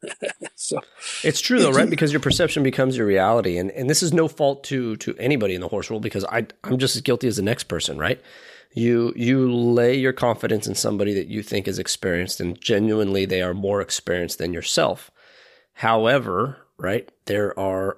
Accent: American